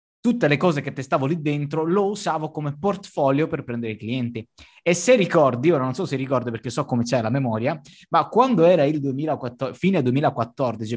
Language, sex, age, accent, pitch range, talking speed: Italian, male, 20-39, native, 120-160 Hz, 190 wpm